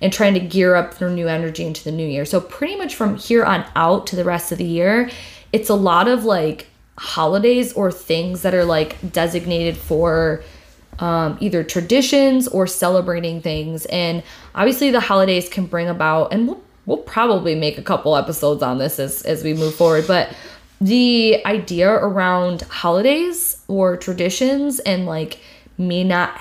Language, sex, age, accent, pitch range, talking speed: English, female, 20-39, American, 165-200 Hz, 175 wpm